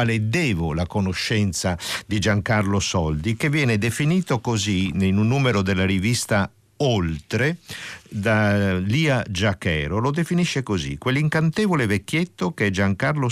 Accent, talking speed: native, 115 wpm